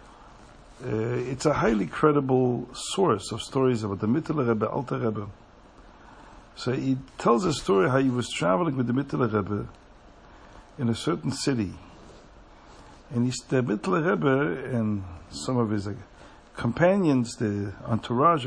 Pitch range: 110-145 Hz